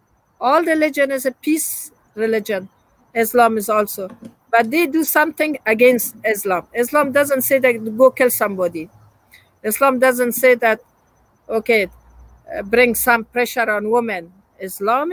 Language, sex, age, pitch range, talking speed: English, female, 50-69, 205-255 Hz, 130 wpm